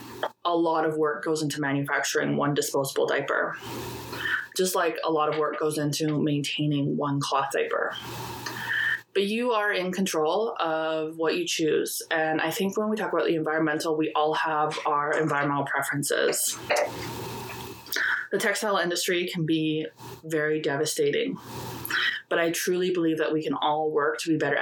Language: English